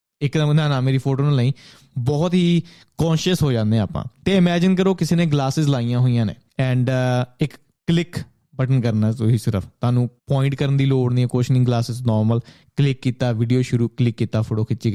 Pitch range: 120-150 Hz